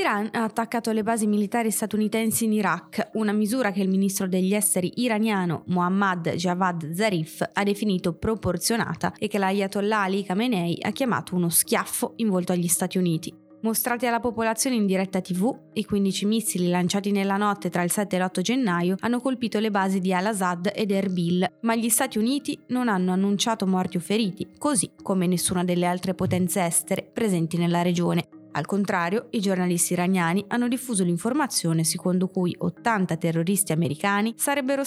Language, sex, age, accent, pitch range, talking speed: Italian, female, 20-39, native, 175-220 Hz, 165 wpm